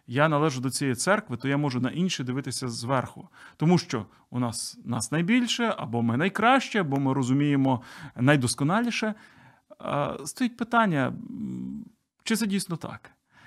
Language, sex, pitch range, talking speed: Ukrainian, male, 130-185 Hz, 145 wpm